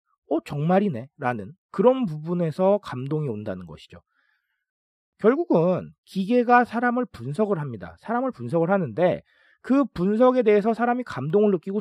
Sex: male